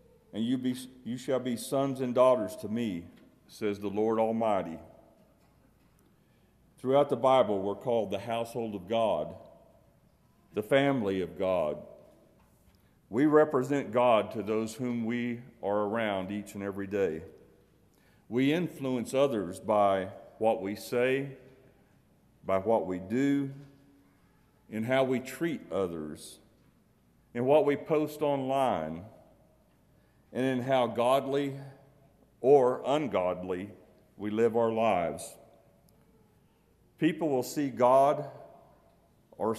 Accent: American